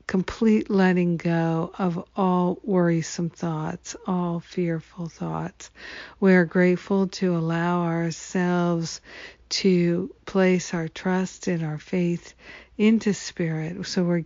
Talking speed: 115 wpm